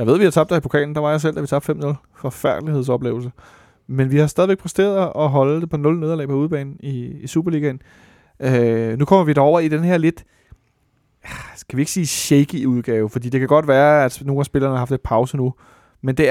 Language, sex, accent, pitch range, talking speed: Danish, male, native, 125-155 Hz, 240 wpm